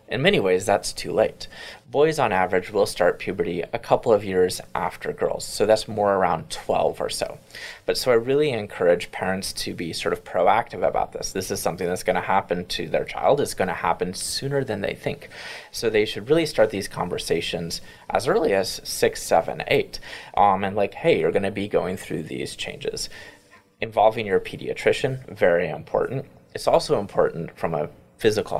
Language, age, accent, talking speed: English, 20-39, American, 195 wpm